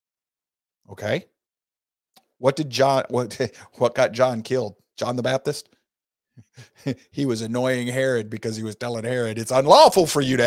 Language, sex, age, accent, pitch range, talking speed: English, male, 50-69, American, 110-135 Hz, 150 wpm